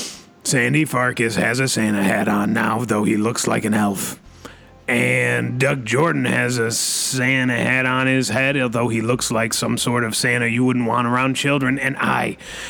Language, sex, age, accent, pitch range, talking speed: English, male, 30-49, American, 115-135 Hz, 185 wpm